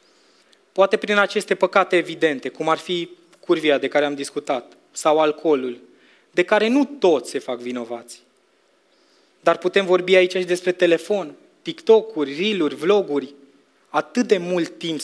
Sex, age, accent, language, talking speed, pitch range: male, 20-39, Romanian, English, 145 wpm, 145-185 Hz